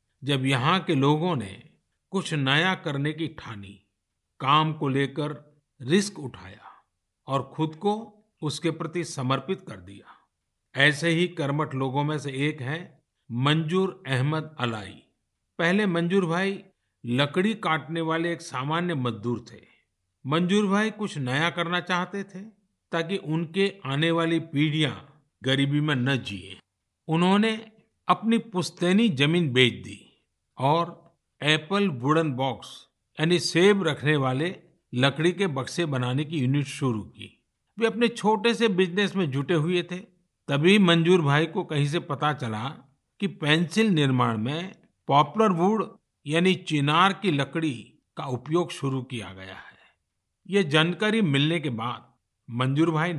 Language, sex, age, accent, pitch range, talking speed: Hindi, male, 50-69, native, 135-185 Hz, 140 wpm